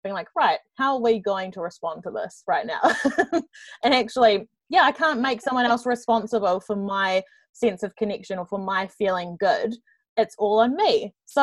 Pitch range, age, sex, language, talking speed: 195-240 Hz, 20-39, female, English, 195 wpm